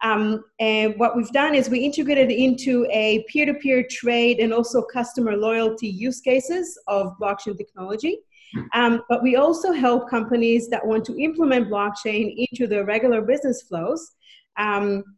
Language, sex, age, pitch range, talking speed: English, female, 30-49, 210-245 Hz, 150 wpm